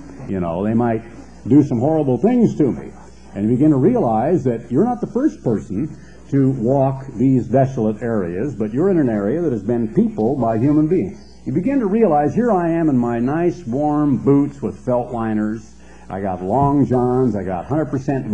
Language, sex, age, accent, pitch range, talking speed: English, male, 60-79, American, 110-135 Hz, 195 wpm